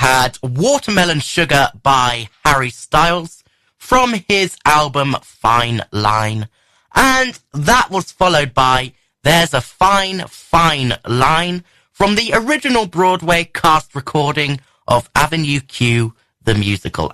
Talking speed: 110 wpm